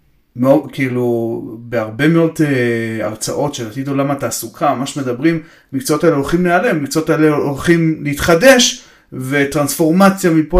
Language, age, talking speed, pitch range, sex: Hebrew, 30-49, 125 wpm, 125-170 Hz, male